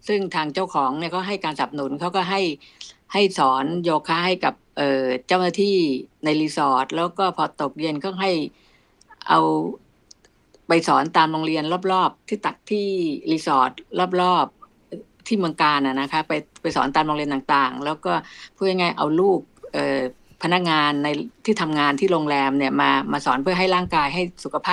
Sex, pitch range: female, 150-190 Hz